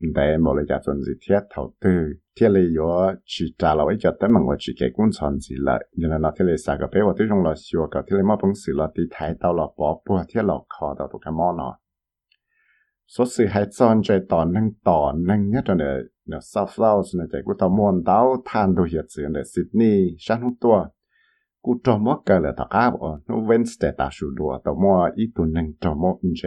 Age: 60-79